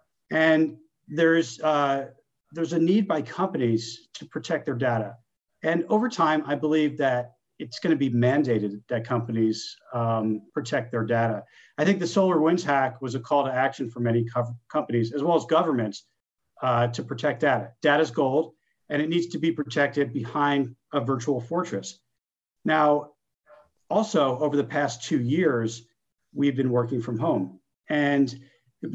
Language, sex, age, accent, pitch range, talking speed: English, male, 50-69, American, 120-155 Hz, 160 wpm